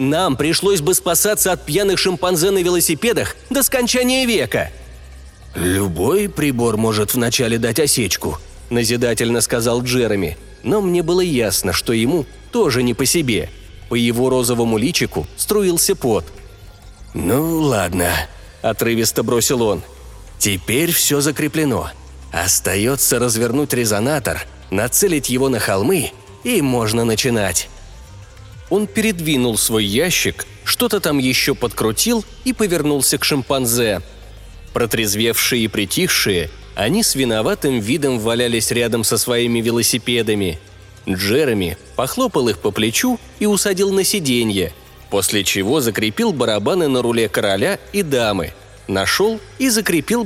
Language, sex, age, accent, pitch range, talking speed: Russian, male, 30-49, native, 100-155 Hz, 120 wpm